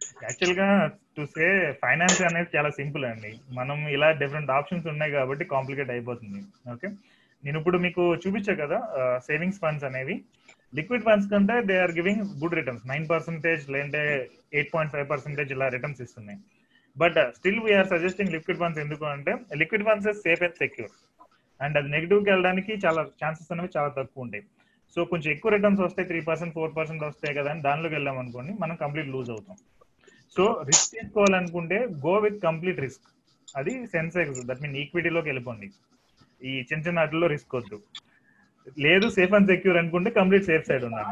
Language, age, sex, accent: Telugu, 30-49, male, native